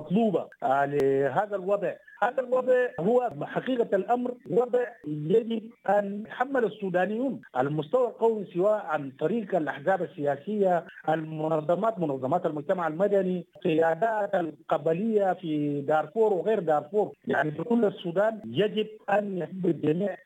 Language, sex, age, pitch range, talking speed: English, male, 50-69, 155-210 Hz, 105 wpm